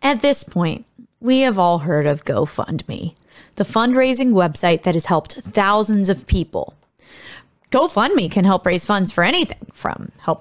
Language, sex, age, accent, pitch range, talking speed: English, female, 30-49, American, 190-290 Hz, 155 wpm